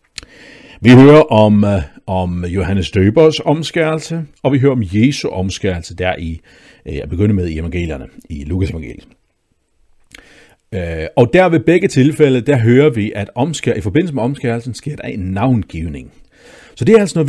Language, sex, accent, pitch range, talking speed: Danish, male, native, 95-135 Hz, 155 wpm